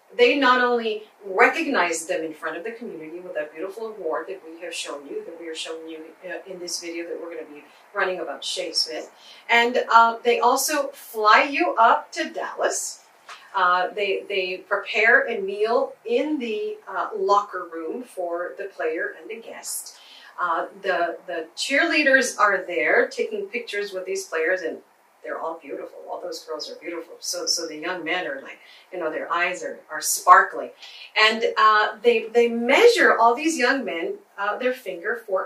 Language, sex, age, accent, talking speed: English, female, 40-59, American, 185 wpm